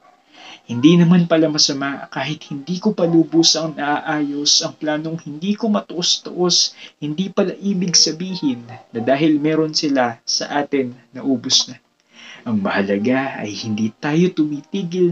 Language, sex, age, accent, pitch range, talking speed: Filipino, male, 20-39, native, 130-175 Hz, 135 wpm